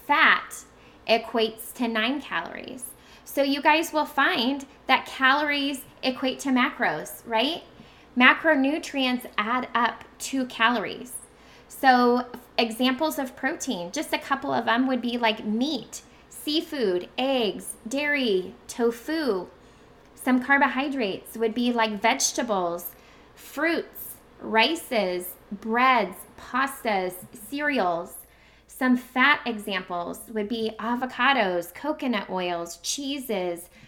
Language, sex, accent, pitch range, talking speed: English, female, American, 205-265 Hz, 105 wpm